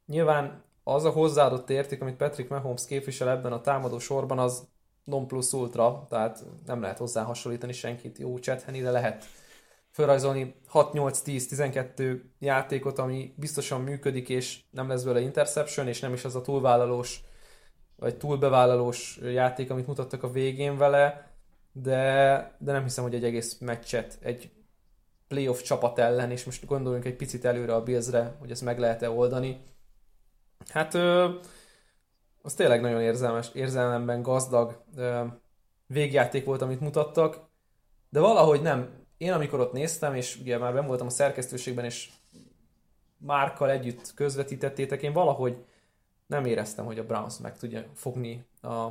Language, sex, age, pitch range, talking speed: Hungarian, male, 20-39, 120-135 Hz, 145 wpm